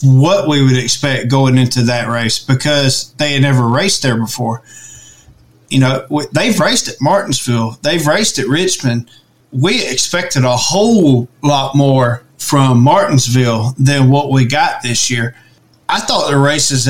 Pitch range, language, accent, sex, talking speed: 130-155 Hz, English, American, male, 155 wpm